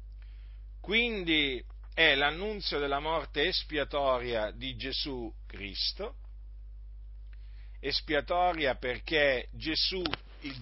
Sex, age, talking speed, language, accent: male, 50-69, 75 wpm, Italian, native